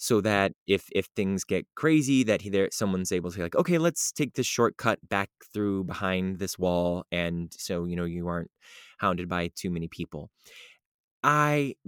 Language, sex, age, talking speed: English, male, 20-39, 185 wpm